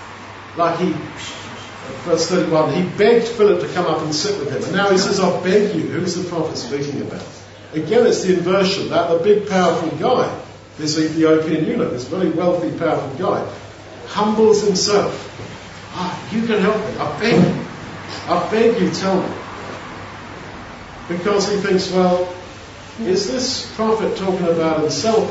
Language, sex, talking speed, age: English, male, 165 wpm, 50-69